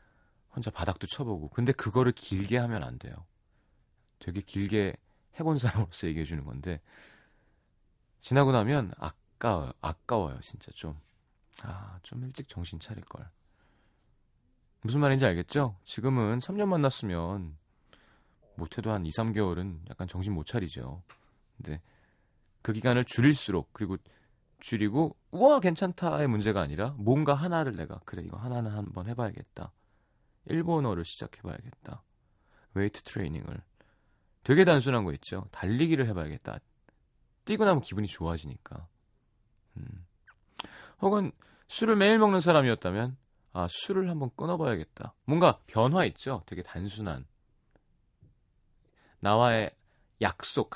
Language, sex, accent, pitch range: Korean, male, native, 90-130 Hz